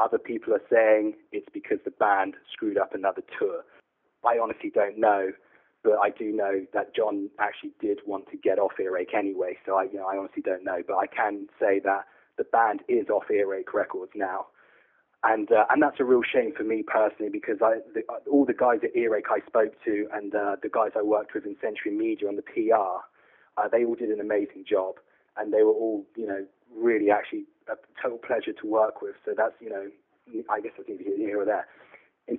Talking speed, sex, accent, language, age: 215 wpm, male, British, English, 20-39